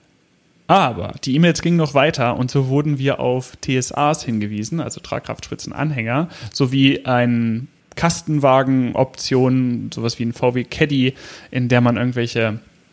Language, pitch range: German, 115-135 Hz